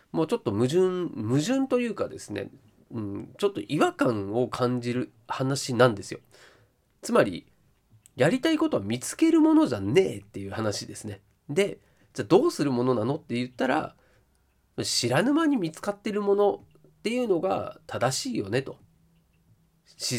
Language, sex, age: Japanese, male, 30-49